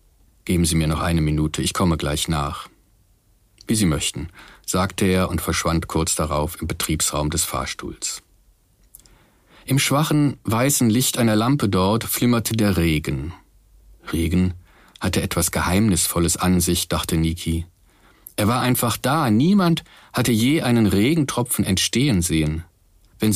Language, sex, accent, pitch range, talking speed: German, male, German, 85-120 Hz, 135 wpm